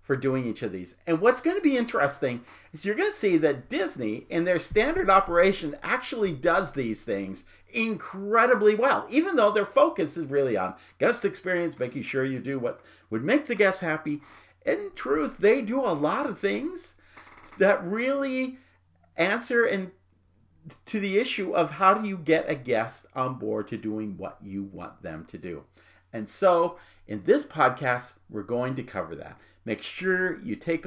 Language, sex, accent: English, male, American